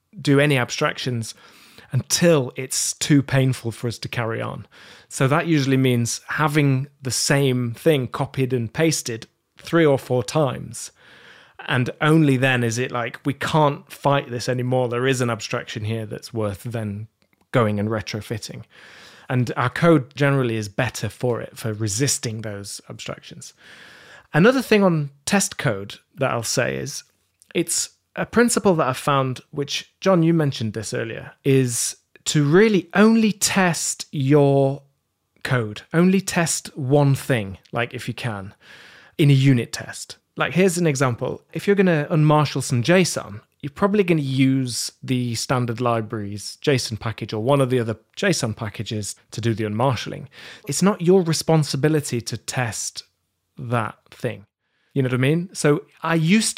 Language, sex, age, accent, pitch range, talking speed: English, male, 30-49, British, 120-155 Hz, 160 wpm